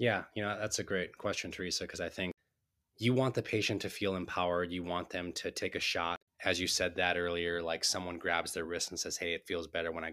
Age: 20-39